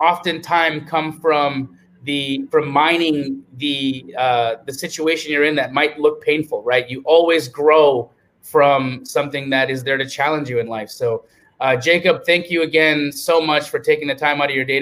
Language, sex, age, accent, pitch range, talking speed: English, male, 30-49, American, 135-160 Hz, 185 wpm